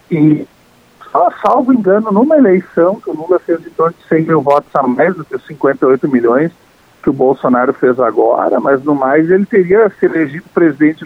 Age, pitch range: 50-69, 125-175 Hz